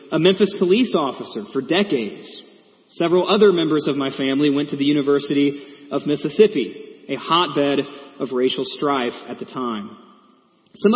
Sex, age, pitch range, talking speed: male, 30-49, 145-195 Hz, 150 wpm